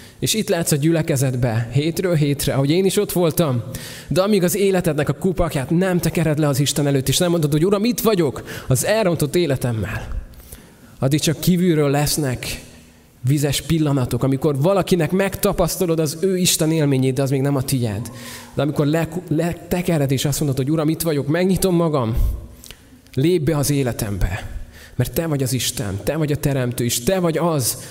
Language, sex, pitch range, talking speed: Hungarian, male, 130-165 Hz, 180 wpm